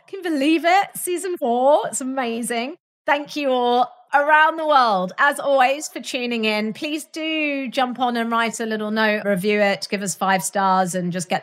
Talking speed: 190 wpm